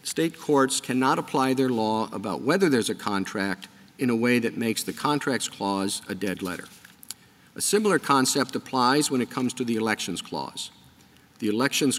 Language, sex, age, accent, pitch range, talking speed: English, male, 50-69, American, 110-135 Hz, 175 wpm